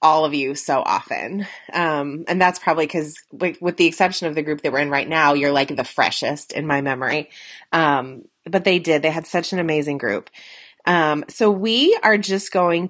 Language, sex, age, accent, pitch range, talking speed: English, female, 30-49, American, 155-200 Hz, 210 wpm